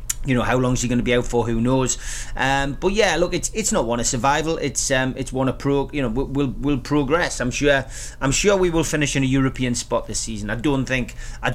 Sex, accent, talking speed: male, British, 265 wpm